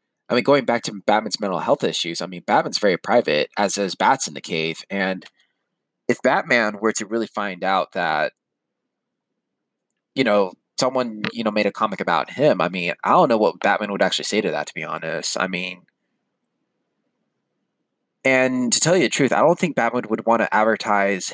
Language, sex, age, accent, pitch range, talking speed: English, male, 20-39, American, 100-115 Hz, 195 wpm